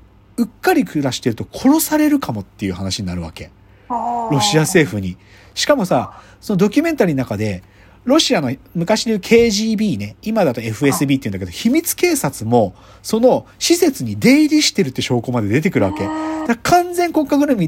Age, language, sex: 40-59, Japanese, male